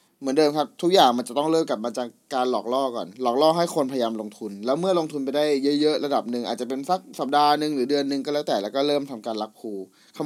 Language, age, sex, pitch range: Thai, 20-39, male, 115-160 Hz